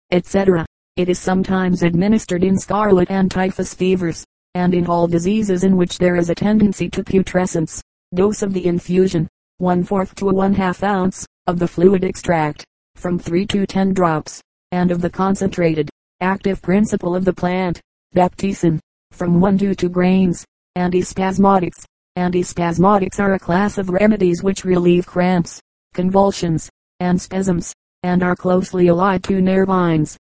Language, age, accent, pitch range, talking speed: English, 40-59, American, 180-195 Hz, 145 wpm